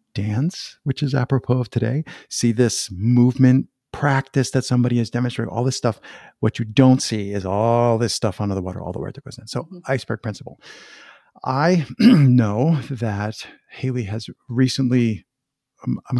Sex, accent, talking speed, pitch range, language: male, American, 165 wpm, 110-130 Hz, English